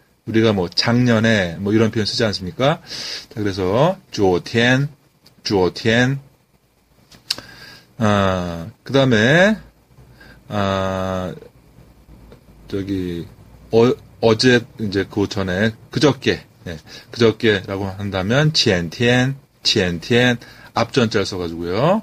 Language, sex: Korean, male